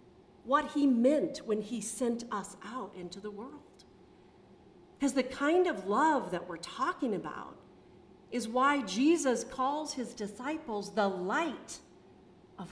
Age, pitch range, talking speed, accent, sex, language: 40-59, 195-280 Hz, 135 wpm, American, female, English